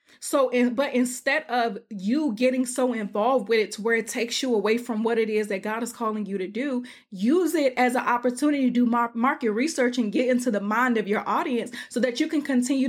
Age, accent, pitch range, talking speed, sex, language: 20-39, American, 205-245 Hz, 230 wpm, female, English